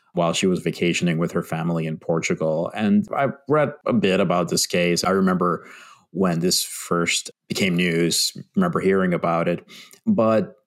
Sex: male